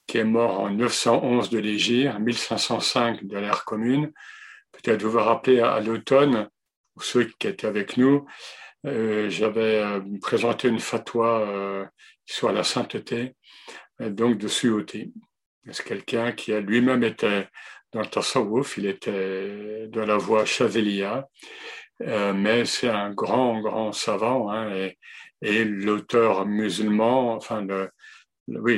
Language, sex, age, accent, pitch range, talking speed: French, male, 60-79, French, 100-120 Hz, 140 wpm